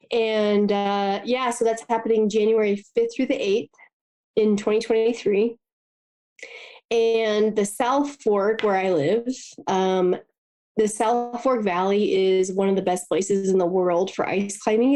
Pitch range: 185-220 Hz